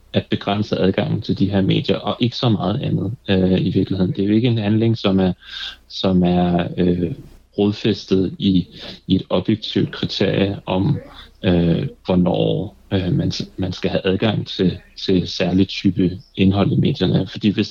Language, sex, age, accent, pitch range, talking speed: Danish, male, 30-49, native, 95-110 Hz, 165 wpm